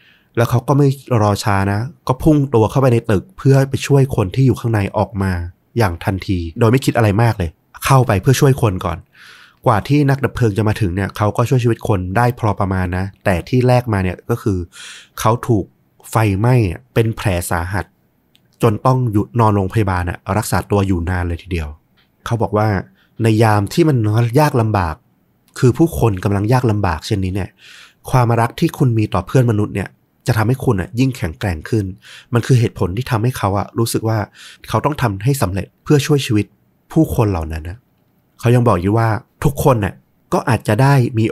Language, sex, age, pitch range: Thai, male, 20-39, 100-125 Hz